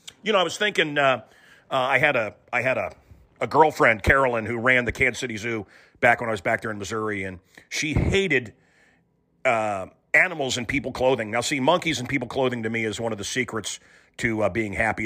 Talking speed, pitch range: 220 wpm, 120-160 Hz